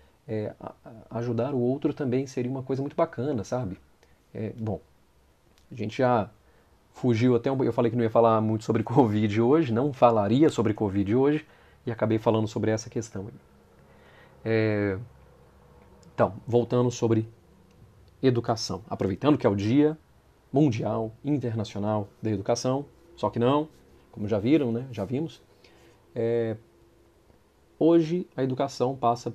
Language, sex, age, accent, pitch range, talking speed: Portuguese, male, 40-59, Brazilian, 105-130 Hz, 140 wpm